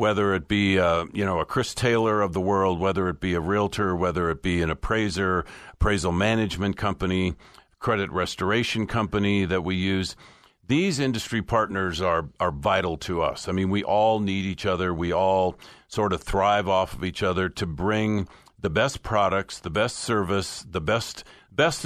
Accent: American